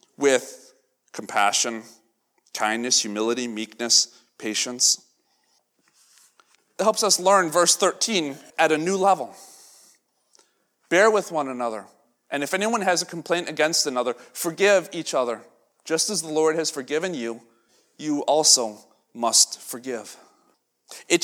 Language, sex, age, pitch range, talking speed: English, male, 40-59, 125-175 Hz, 120 wpm